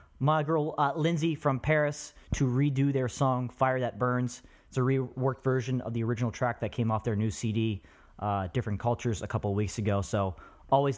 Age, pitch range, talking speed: 30-49, 100-135 Hz, 200 wpm